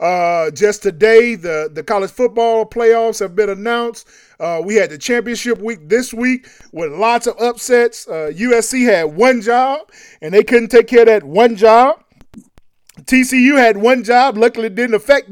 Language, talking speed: English, 175 wpm